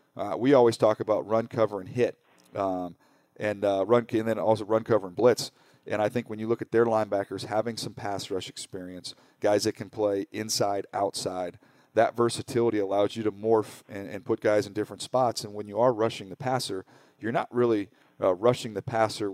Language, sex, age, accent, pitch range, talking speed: English, male, 40-59, American, 100-115 Hz, 210 wpm